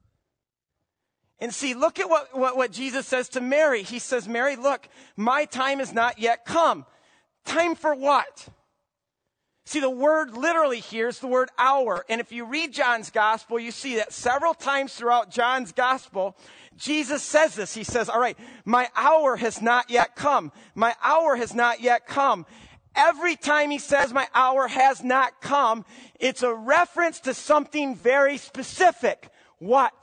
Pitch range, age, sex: 230-295 Hz, 40-59, male